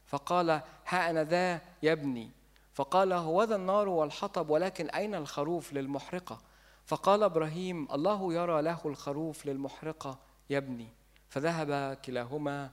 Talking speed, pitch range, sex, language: 110 wpm, 140-175 Hz, male, Arabic